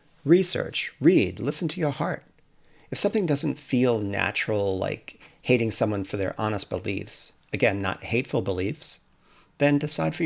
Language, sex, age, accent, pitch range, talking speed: English, male, 40-59, American, 95-130 Hz, 145 wpm